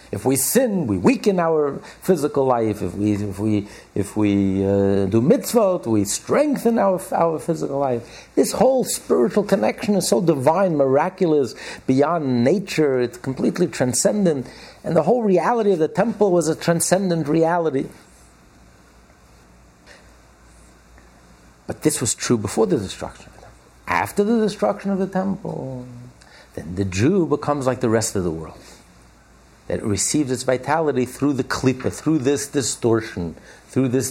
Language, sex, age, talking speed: English, male, 60-79, 150 wpm